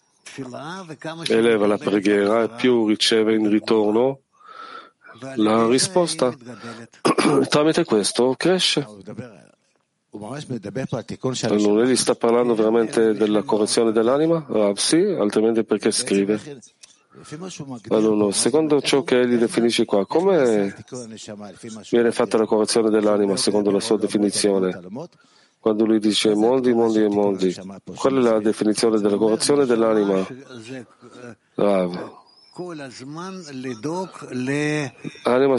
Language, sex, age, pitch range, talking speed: Italian, male, 40-59, 105-135 Hz, 100 wpm